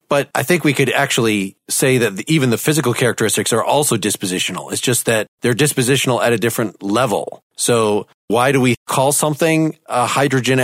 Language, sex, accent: English, male, American